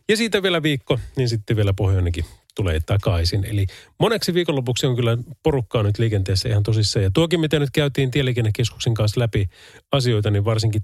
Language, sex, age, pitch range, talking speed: Finnish, male, 30-49, 105-145 Hz, 170 wpm